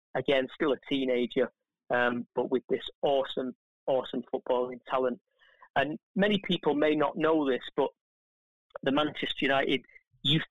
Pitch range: 130-155 Hz